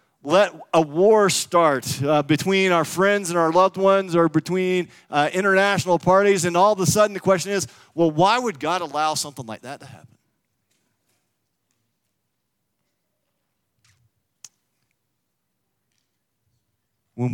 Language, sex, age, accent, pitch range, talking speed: English, male, 40-59, American, 120-175 Hz, 125 wpm